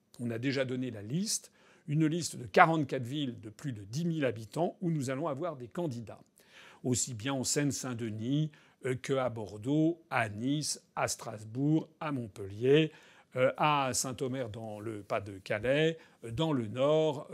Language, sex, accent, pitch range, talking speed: French, male, French, 125-170 Hz, 150 wpm